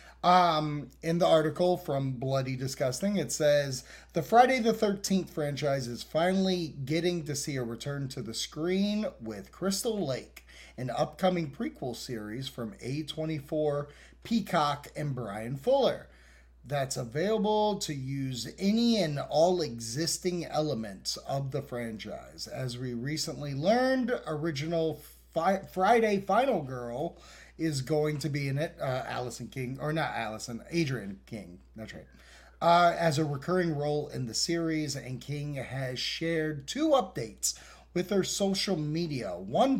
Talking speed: 140 wpm